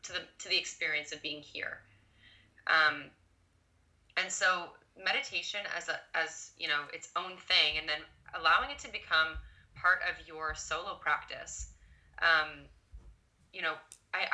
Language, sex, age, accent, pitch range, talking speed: English, female, 20-39, American, 150-190 Hz, 145 wpm